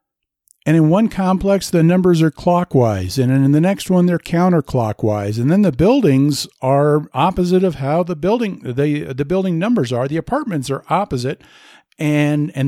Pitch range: 125-175 Hz